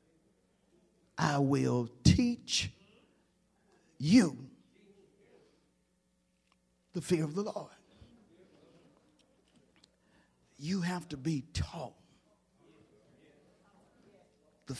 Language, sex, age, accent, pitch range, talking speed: English, male, 50-69, American, 130-175 Hz, 60 wpm